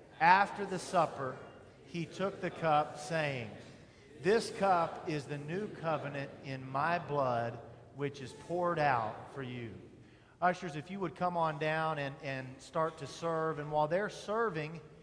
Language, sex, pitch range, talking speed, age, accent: English, male, 145-190 Hz, 155 wpm, 40-59, American